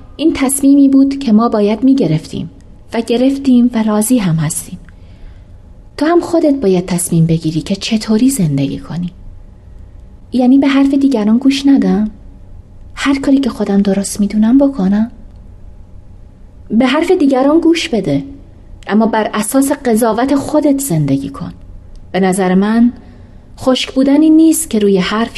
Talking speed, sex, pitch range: 135 wpm, female, 155-245 Hz